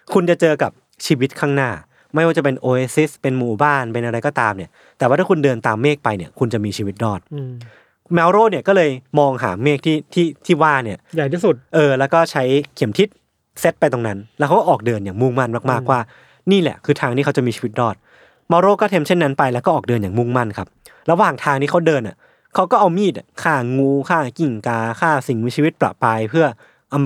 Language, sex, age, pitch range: Thai, male, 20-39, 120-165 Hz